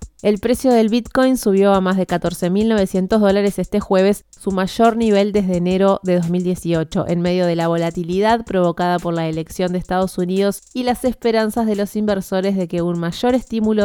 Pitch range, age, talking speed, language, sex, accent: 180-220 Hz, 20-39, 180 wpm, Spanish, female, Argentinian